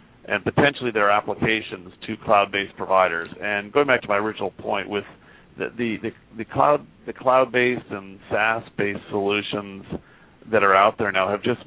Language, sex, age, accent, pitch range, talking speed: English, male, 40-59, American, 100-115 Hz, 180 wpm